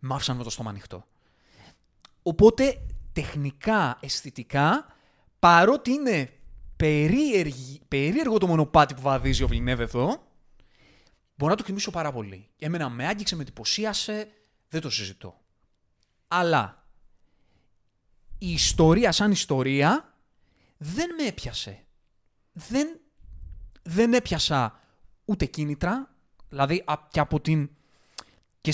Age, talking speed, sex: 30-49, 110 wpm, male